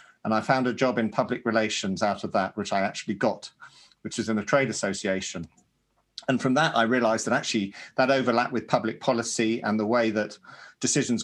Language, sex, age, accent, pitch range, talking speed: English, male, 40-59, British, 110-125 Hz, 205 wpm